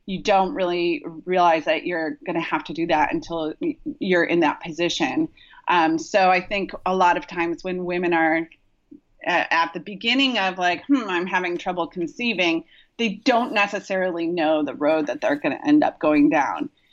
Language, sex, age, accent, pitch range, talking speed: English, female, 30-49, American, 170-225 Hz, 175 wpm